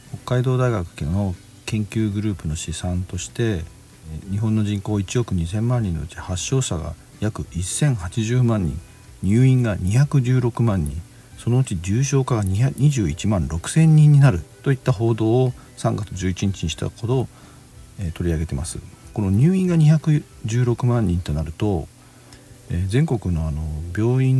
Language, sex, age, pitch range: Japanese, male, 50-69, 95-130 Hz